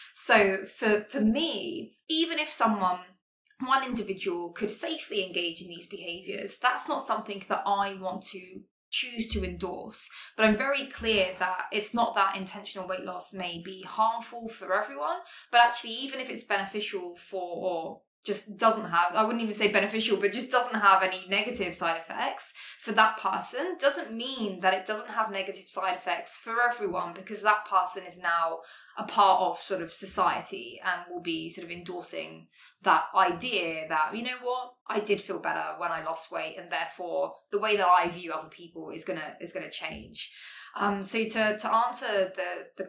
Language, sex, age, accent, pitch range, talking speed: English, female, 20-39, British, 185-240 Hz, 185 wpm